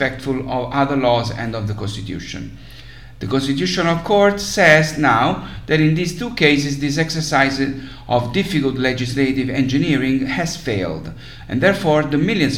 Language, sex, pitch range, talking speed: English, male, 115-145 Hz, 150 wpm